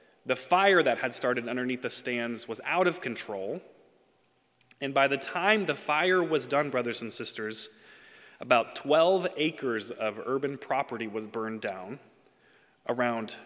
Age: 30-49